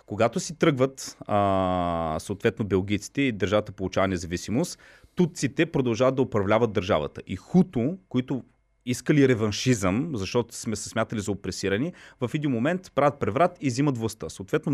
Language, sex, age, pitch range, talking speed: Bulgarian, male, 30-49, 105-145 Hz, 145 wpm